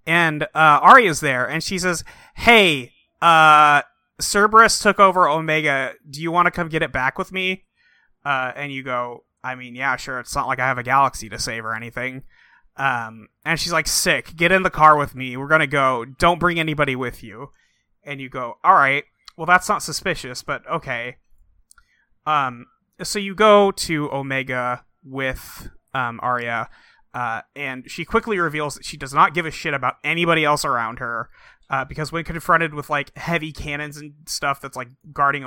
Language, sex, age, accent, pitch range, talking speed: English, male, 30-49, American, 130-165 Hz, 190 wpm